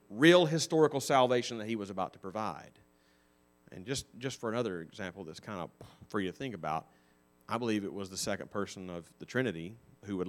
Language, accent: English, American